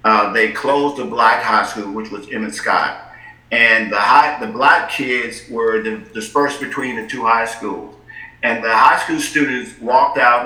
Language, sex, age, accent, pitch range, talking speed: English, male, 50-69, American, 120-150 Hz, 180 wpm